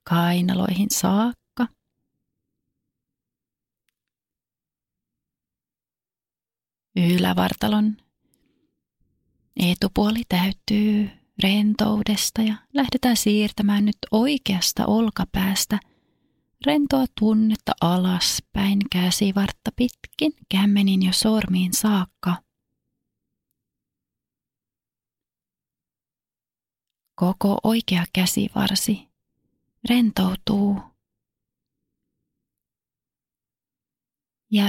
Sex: female